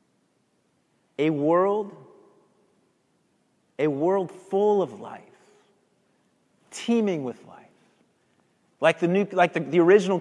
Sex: male